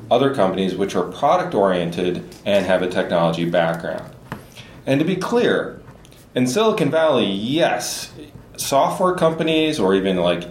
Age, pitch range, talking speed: 30-49, 95-140 Hz, 130 wpm